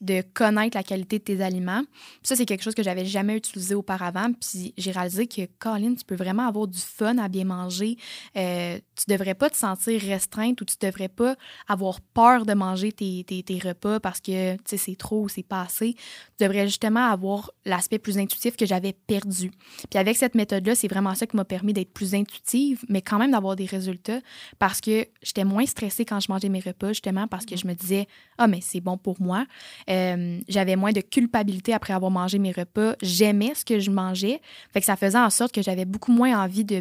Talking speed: 230 wpm